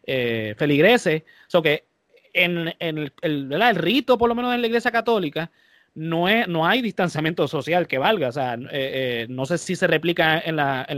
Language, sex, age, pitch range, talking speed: Spanish, male, 30-49, 155-210 Hz, 195 wpm